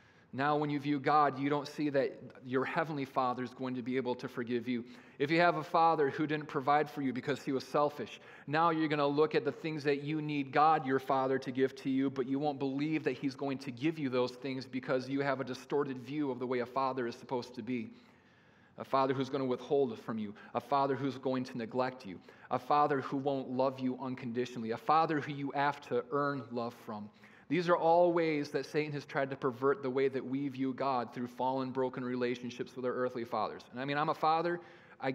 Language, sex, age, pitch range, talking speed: English, male, 40-59, 130-150 Hz, 240 wpm